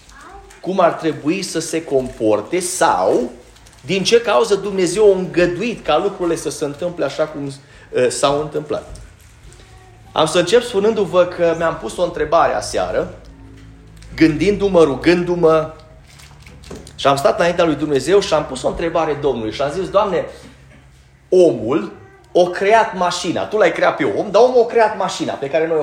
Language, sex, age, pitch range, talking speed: Romanian, male, 30-49, 145-245 Hz, 155 wpm